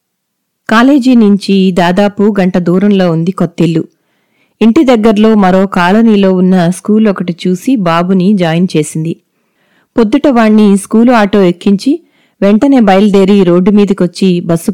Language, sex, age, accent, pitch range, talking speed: Telugu, female, 30-49, native, 180-220 Hz, 115 wpm